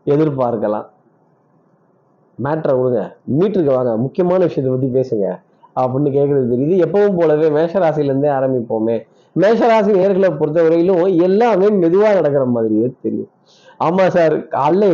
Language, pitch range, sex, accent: Tamil, 130-170 Hz, male, native